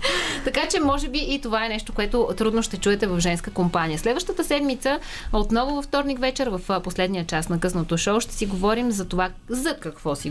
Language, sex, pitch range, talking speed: Bulgarian, female, 185-245 Hz, 205 wpm